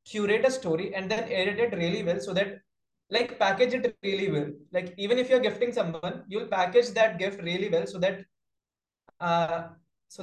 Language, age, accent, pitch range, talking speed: English, 20-39, Indian, 170-200 Hz, 195 wpm